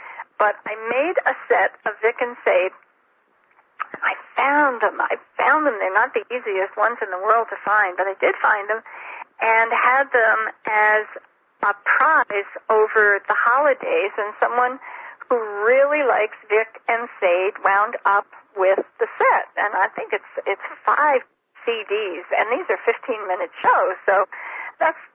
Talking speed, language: 155 wpm, English